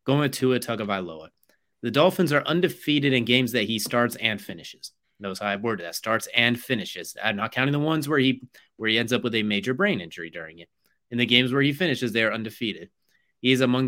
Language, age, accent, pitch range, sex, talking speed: English, 30-49, American, 105-135 Hz, male, 230 wpm